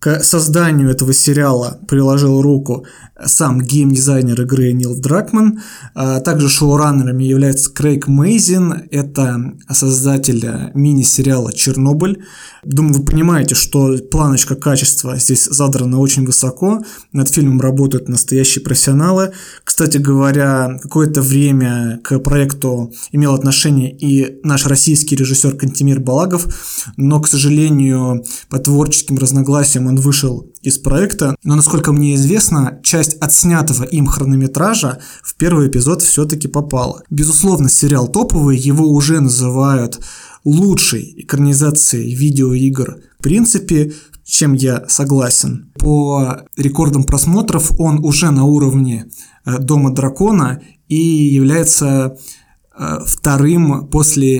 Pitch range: 135-150 Hz